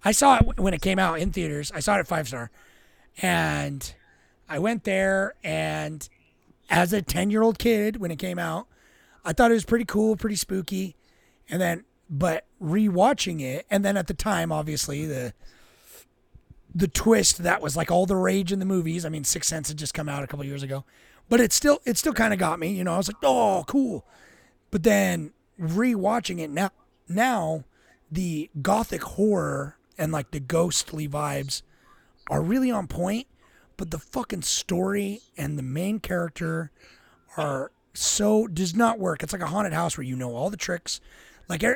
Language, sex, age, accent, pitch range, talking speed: English, male, 30-49, American, 155-210 Hz, 190 wpm